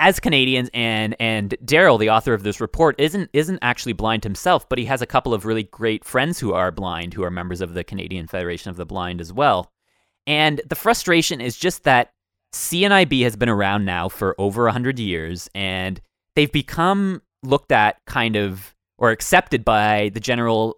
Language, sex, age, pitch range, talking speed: English, male, 20-39, 105-140 Hz, 195 wpm